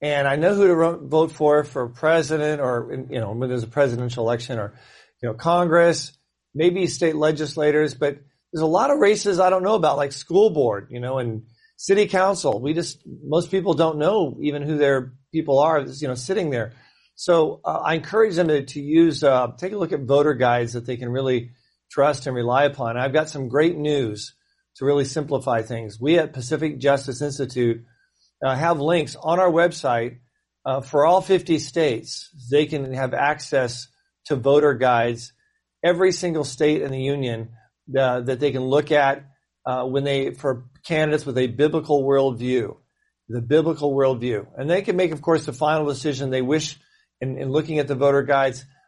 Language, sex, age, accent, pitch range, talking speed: English, male, 40-59, American, 130-160 Hz, 190 wpm